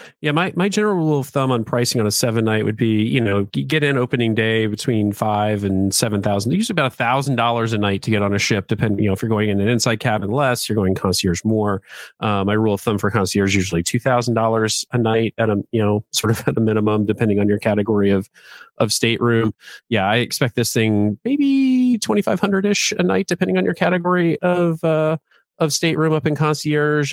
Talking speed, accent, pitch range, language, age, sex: 235 wpm, American, 105-135 Hz, English, 40-59, male